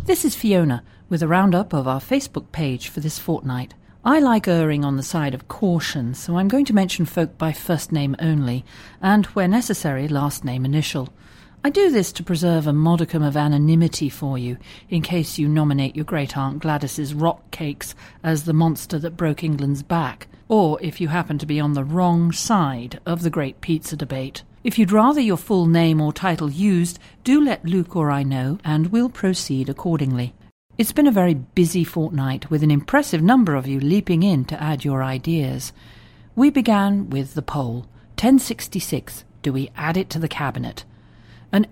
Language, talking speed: English, 185 wpm